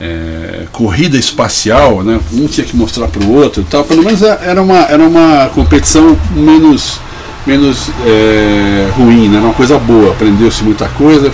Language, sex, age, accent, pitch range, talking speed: Portuguese, male, 60-79, Brazilian, 95-130 Hz, 170 wpm